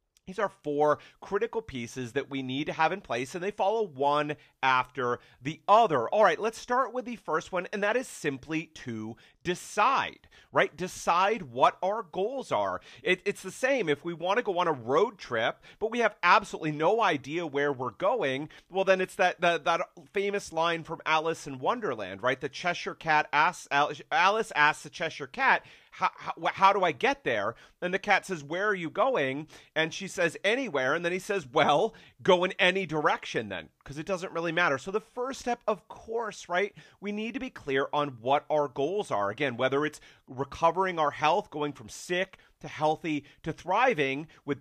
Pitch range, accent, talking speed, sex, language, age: 145-195 Hz, American, 195 wpm, male, English, 40-59